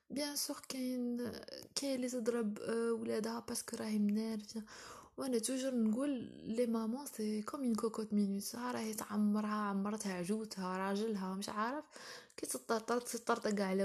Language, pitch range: Arabic, 205-240 Hz